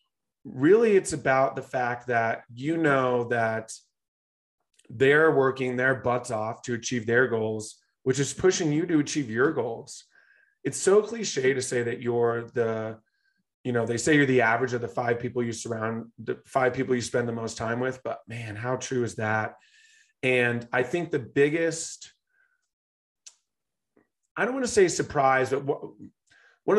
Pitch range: 120-150 Hz